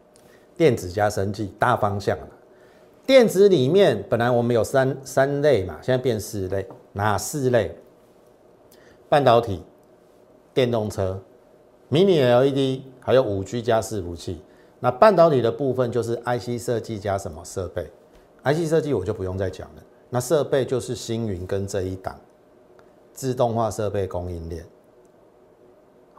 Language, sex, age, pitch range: Chinese, male, 50-69, 100-130 Hz